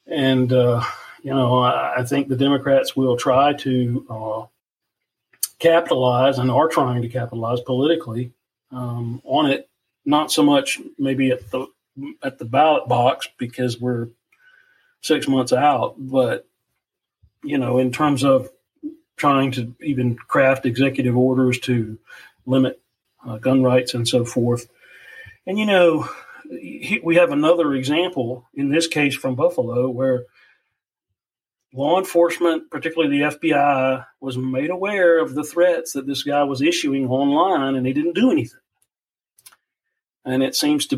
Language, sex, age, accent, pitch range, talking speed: English, male, 40-59, American, 125-150 Hz, 140 wpm